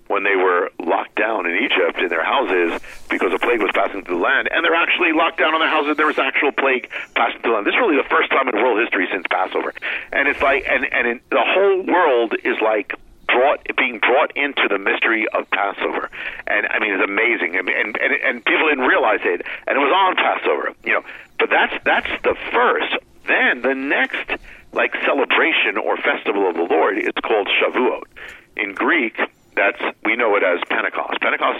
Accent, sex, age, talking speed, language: American, male, 50-69, 215 wpm, English